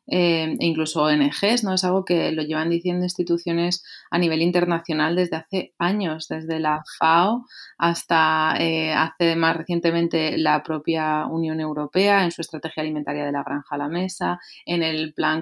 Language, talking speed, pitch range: Spanish, 165 wpm, 155-180 Hz